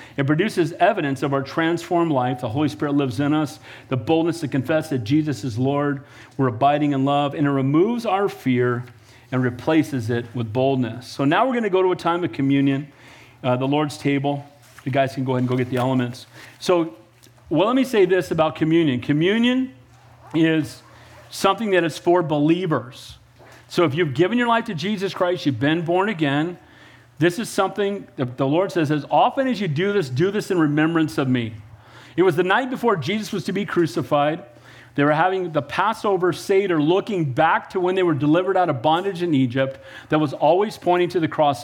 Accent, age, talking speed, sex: American, 40-59, 205 wpm, male